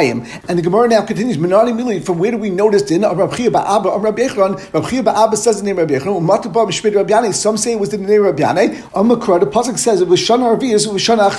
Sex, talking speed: male, 250 wpm